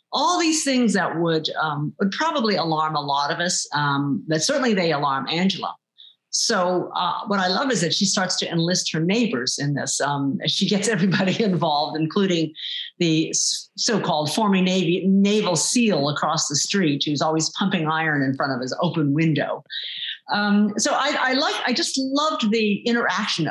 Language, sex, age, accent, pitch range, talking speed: English, female, 50-69, American, 150-205 Hz, 180 wpm